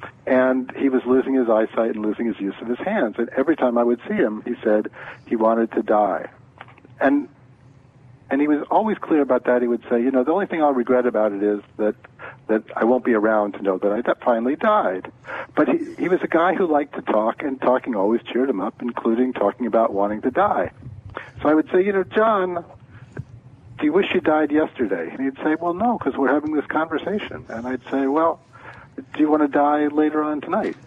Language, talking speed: English, 225 wpm